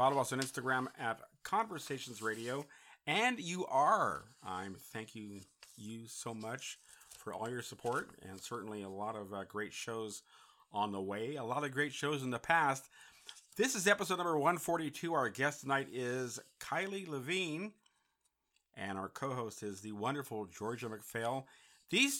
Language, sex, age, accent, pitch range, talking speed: English, male, 50-69, American, 105-155 Hz, 160 wpm